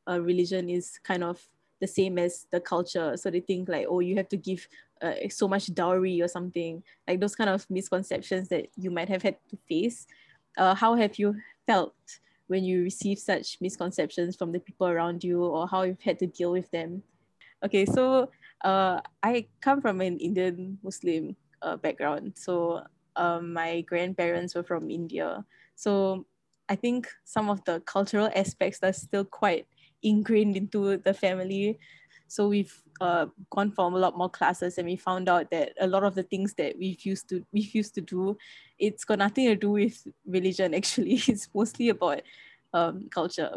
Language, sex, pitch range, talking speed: English, female, 180-205 Hz, 180 wpm